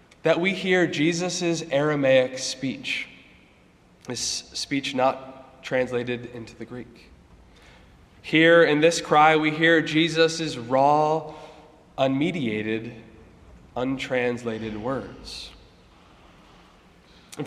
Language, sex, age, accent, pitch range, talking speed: English, male, 20-39, American, 125-170 Hz, 85 wpm